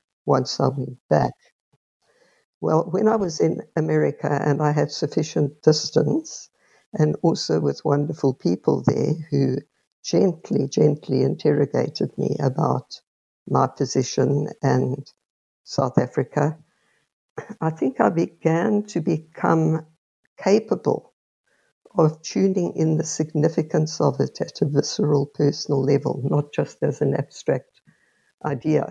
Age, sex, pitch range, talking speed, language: 60-79, female, 140-160 Hz, 120 wpm, English